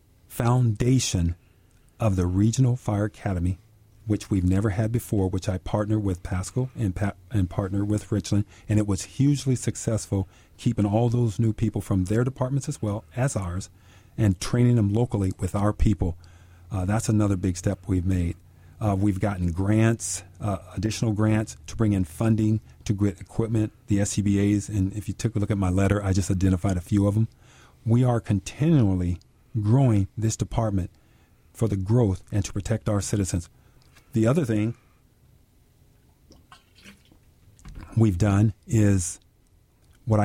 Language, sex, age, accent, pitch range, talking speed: English, male, 40-59, American, 95-115 Hz, 160 wpm